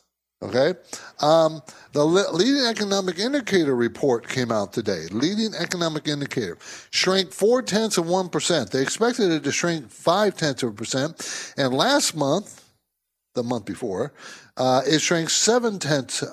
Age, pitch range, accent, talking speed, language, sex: 60-79, 125-175 Hz, American, 145 wpm, English, male